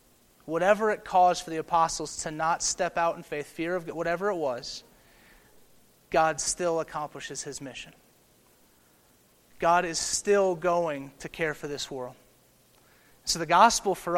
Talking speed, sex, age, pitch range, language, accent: 150 wpm, male, 30-49, 145-170 Hz, English, American